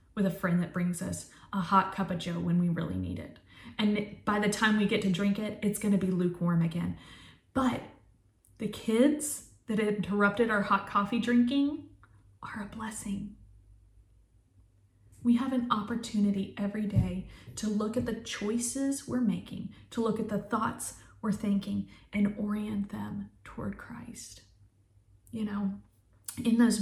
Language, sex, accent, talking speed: English, female, American, 160 wpm